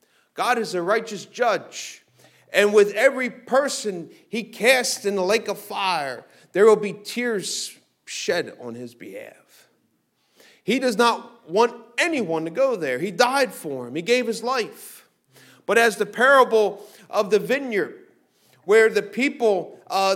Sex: male